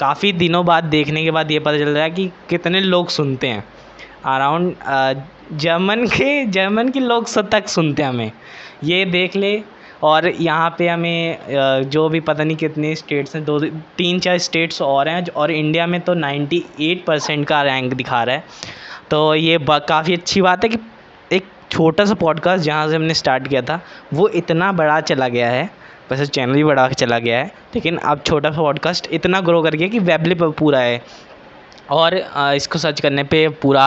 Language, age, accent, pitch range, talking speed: Hindi, 10-29, native, 145-175 Hz, 190 wpm